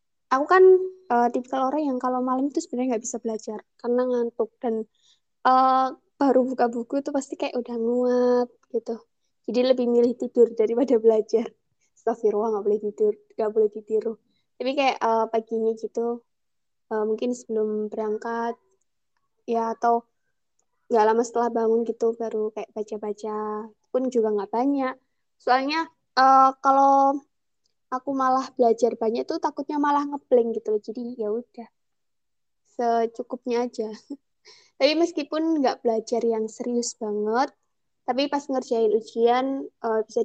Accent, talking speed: native, 140 wpm